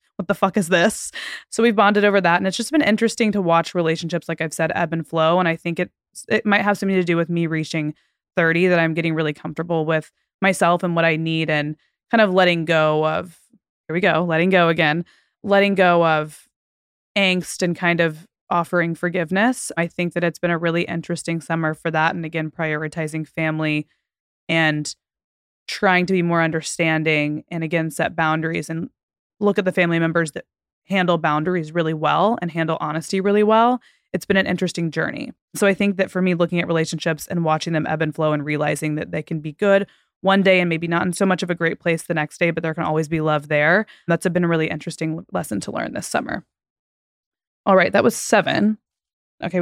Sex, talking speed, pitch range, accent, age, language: female, 215 wpm, 160-190 Hz, American, 20-39, English